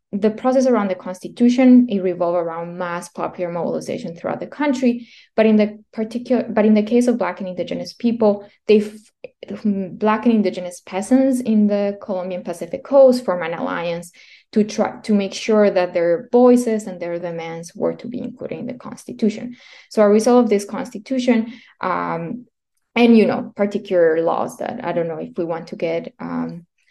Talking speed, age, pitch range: 180 wpm, 20-39, 180-240 Hz